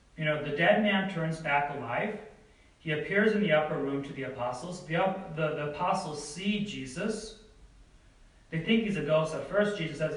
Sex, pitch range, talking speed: male, 140-190 Hz, 190 wpm